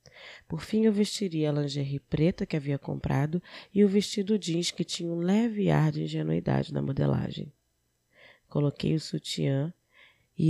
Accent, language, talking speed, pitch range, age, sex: Brazilian, Portuguese, 155 wpm, 135-175 Hz, 20-39, female